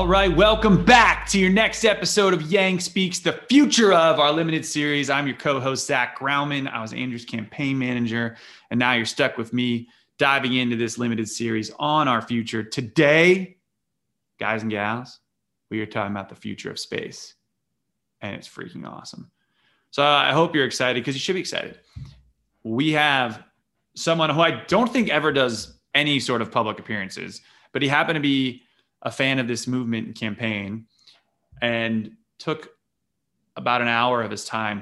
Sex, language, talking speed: male, English, 175 wpm